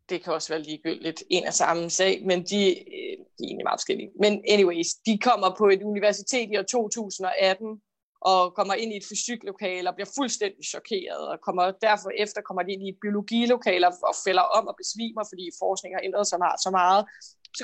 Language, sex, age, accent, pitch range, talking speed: Danish, female, 20-39, native, 185-230 Hz, 200 wpm